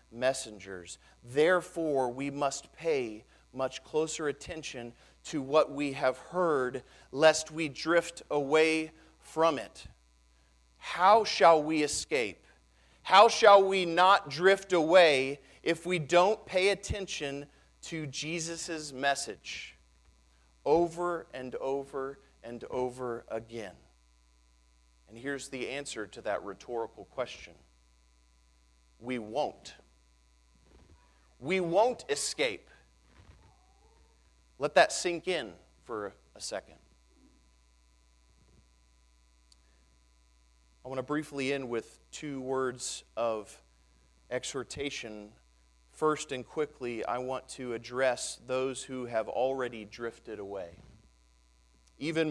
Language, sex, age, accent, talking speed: English, male, 40-59, American, 100 wpm